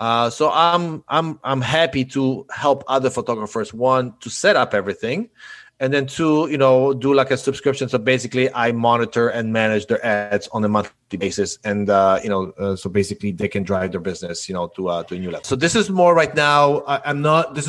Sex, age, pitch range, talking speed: male, 30-49, 105-135 Hz, 225 wpm